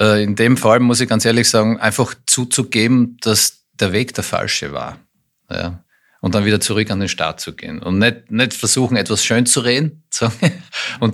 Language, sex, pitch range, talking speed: German, male, 90-120 Hz, 190 wpm